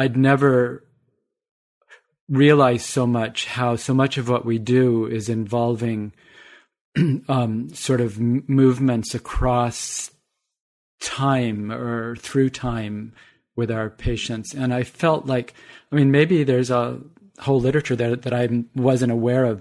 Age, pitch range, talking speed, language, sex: 40-59, 115-135 Hz, 140 wpm, English, male